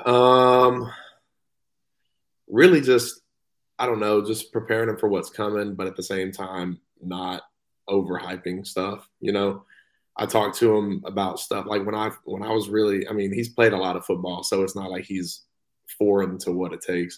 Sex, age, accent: male, 20-39, American